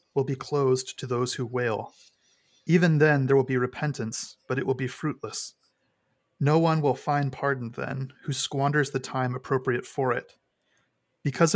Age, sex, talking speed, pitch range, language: 30-49, male, 165 wpm, 125-145 Hz, English